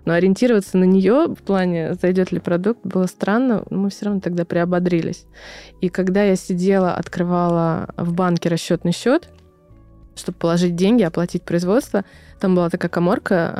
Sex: female